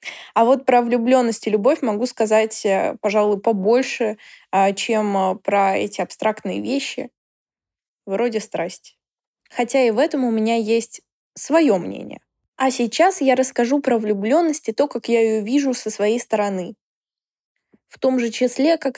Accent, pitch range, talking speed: native, 215-265 Hz, 145 wpm